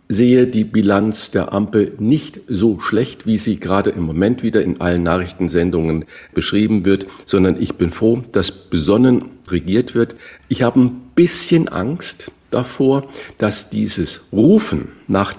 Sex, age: male, 50-69